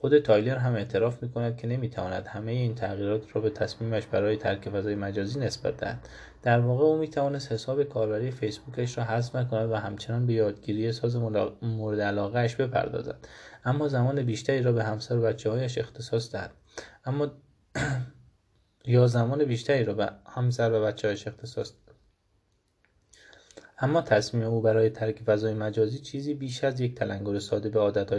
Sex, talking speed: male, 160 wpm